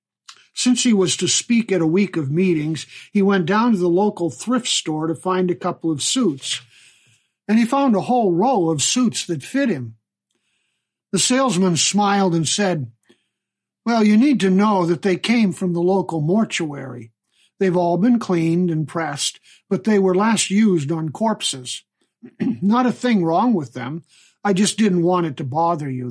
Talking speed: 180 wpm